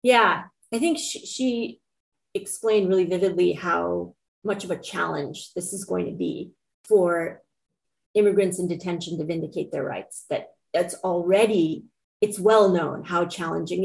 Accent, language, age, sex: American, English, 30-49, female